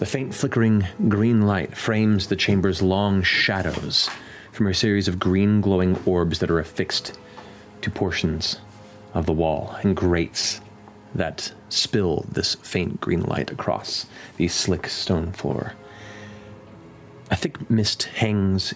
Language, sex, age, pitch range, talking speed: English, male, 30-49, 90-105 Hz, 135 wpm